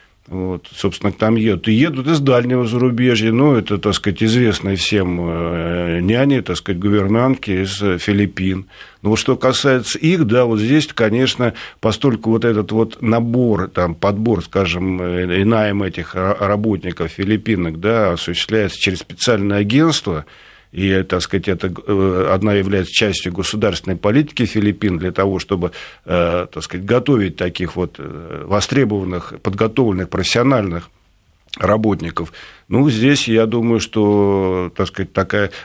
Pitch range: 95-115 Hz